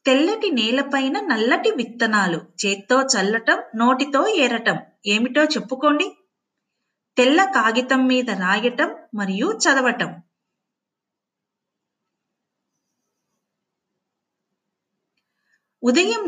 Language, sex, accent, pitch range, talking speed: Telugu, female, native, 230-315 Hz, 65 wpm